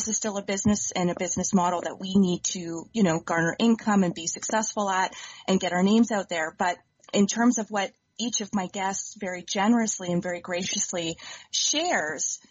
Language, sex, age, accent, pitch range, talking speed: English, female, 30-49, American, 180-220 Hz, 200 wpm